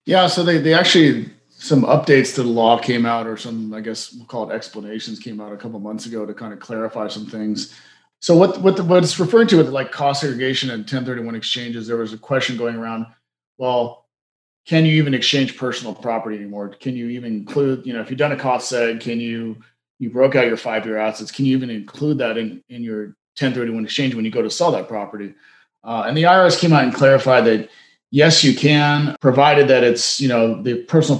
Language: English